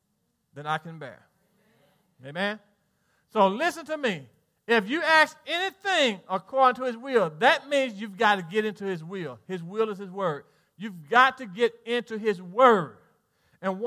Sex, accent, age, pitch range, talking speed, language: male, American, 40-59, 190-265 Hz, 170 wpm, English